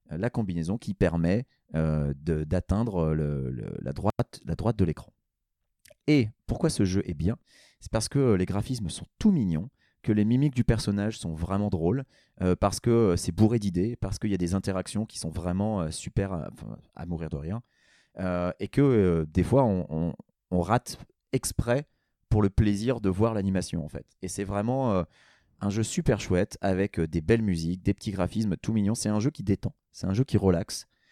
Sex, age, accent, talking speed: male, 30-49, French, 200 wpm